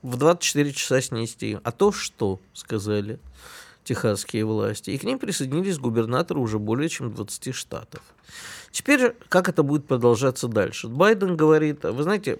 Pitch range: 115-155 Hz